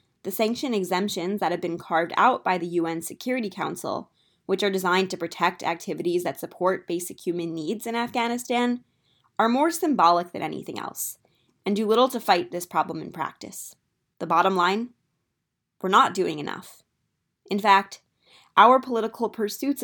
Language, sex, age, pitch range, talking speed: English, female, 20-39, 175-210 Hz, 160 wpm